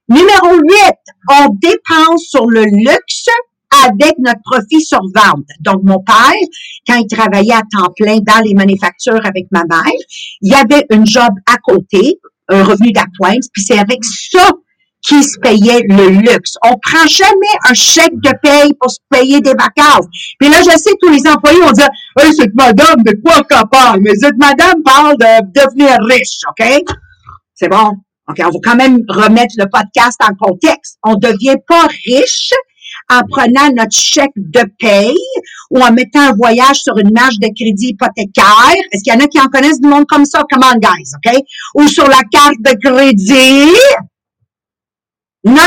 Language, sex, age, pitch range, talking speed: English, female, 50-69, 220-295 Hz, 185 wpm